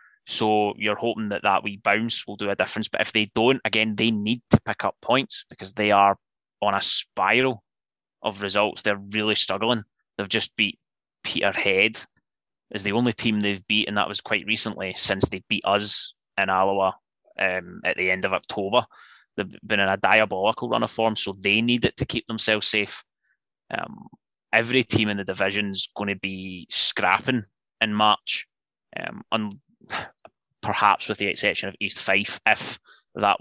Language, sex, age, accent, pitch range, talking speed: English, male, 20-39, British, 100-110 Hz, 180 wpm